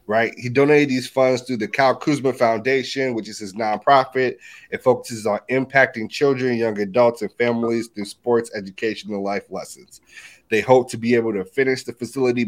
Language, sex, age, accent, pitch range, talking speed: English, male, 30-49, American, 115-135 Hz, 180 wpm